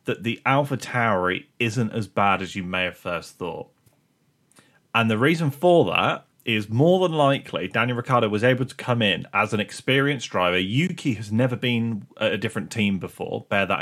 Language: English